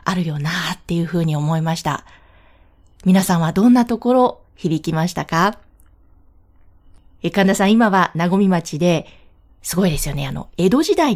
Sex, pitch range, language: female, 165-230 Hz, Japanese